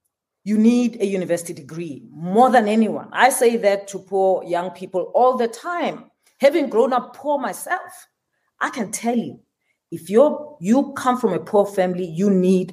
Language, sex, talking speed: English, female, 175 wpm